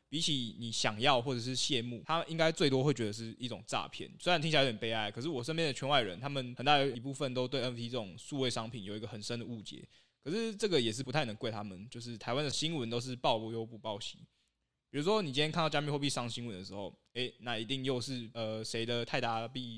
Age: 20-39